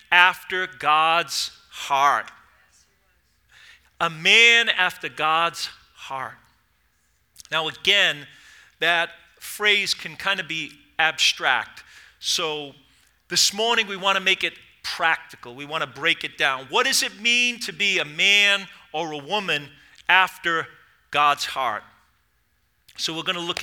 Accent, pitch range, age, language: American, 150-210 Hz, 40-59, English